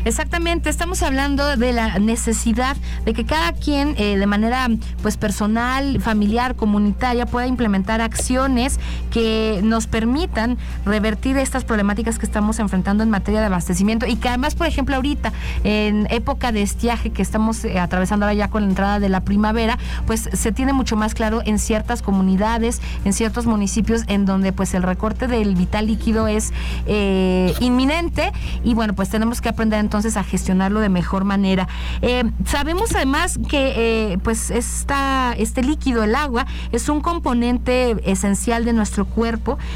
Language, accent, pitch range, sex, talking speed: Spanish, Mexican, 205-245 Hz, female, 165 wpm